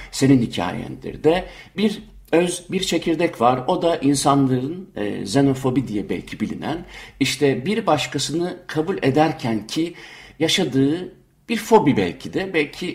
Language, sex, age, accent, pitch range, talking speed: Turkish, male, 60-79, native, 120-170 Hz, 130 wpm